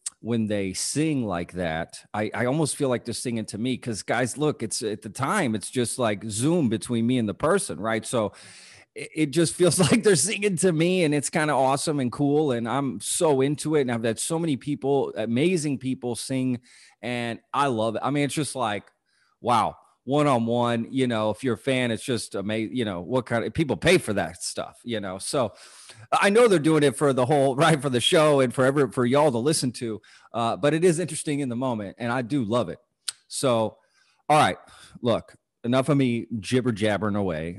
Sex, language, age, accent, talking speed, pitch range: male, English, 30-49, American, 215 wpm, 110-145 Hz